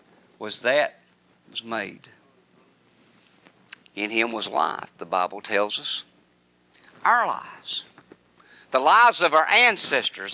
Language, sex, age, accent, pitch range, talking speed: English, male, 50-69, American, 165-255 Hz, 110 wpm